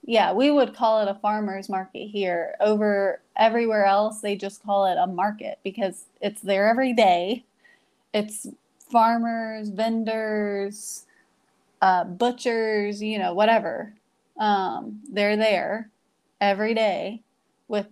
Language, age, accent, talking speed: English, 20-39, American, 125 wpm